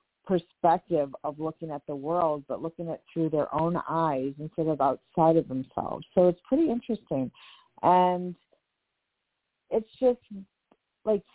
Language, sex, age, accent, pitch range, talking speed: English, female, 40-59, American, 155-185 Hz, 135 wpm